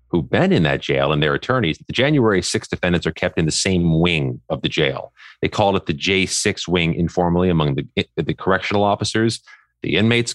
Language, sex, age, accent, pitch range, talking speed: English, male, 30-49, American, 80-115 Hz, 205 wpm